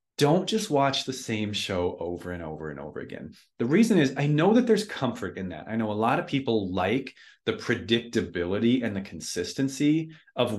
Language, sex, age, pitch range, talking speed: English, male, 30-49, 105-130 Hz, 200 wpm